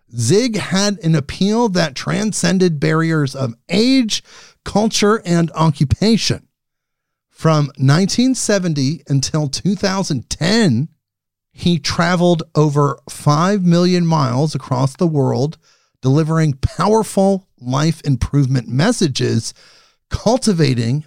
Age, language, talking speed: 40-59, English, 90 wpm